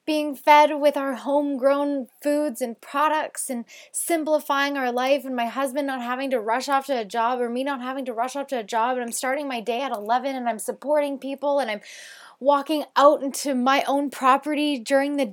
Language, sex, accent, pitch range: English, female, American, 210-280 Hz